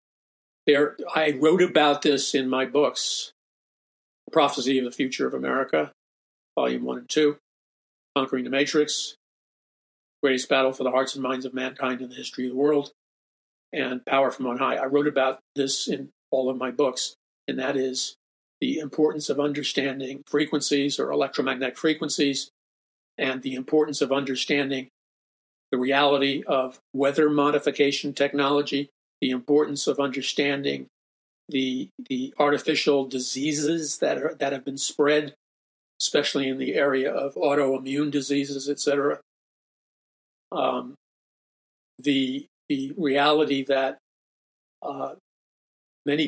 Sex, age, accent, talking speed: male, 50-69, American, 130 wpm